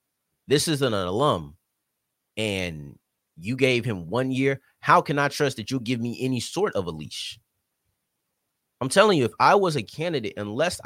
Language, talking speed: English, 175 wpm